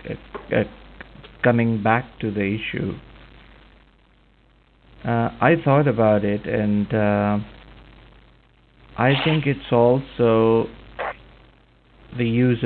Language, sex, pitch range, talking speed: English, male, 100-115 Hz, 90 wpm